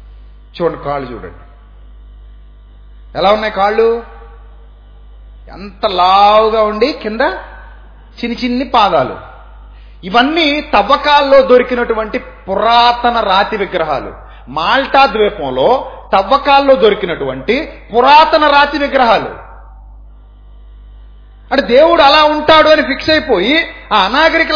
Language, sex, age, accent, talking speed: Telugu, male, 30-49, native, 85 wpm